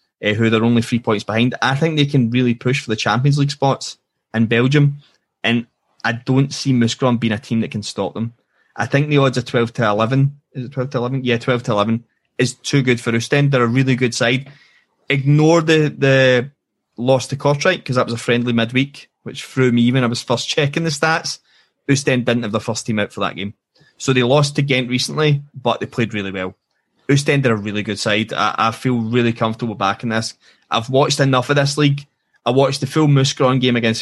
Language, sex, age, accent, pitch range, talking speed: English, male, 20-39, British, 115-140 Hz, 225 wpm